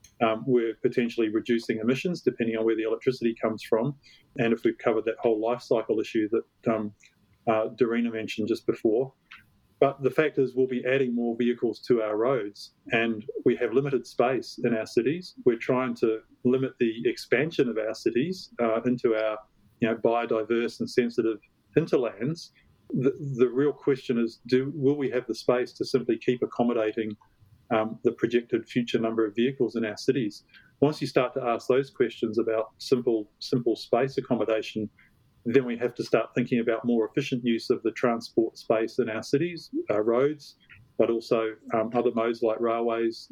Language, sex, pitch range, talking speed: English, male, 115-130 Hz, 180 wpm